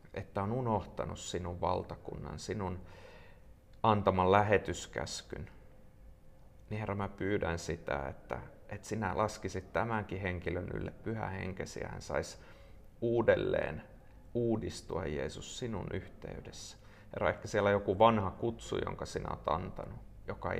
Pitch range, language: 85-105 Hz, Finnish